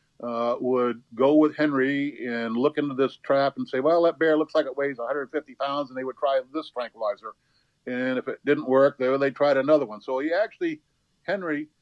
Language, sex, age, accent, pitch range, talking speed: English, male, 50-69, American, 125-155 Hz, 205 wpm